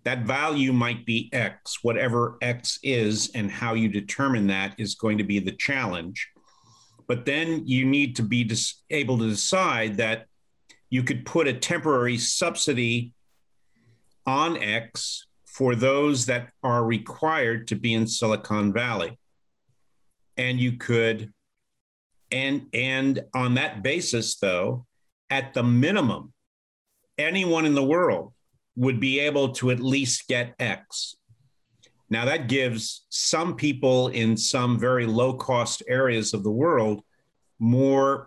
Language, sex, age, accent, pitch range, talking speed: English, male, 50-69, American, 115-130 Hz, 135 wpm